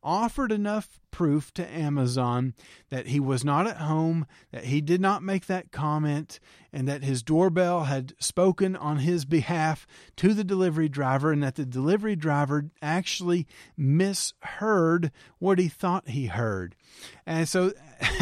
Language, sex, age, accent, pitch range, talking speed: English, male, 40-59, American, 140-180 Hz, 150 wpm